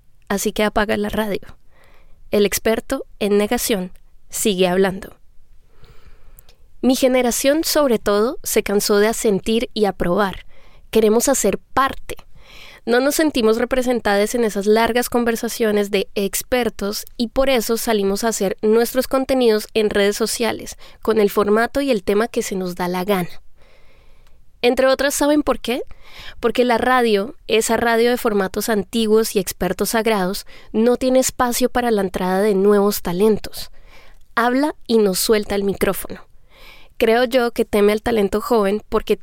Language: Spanish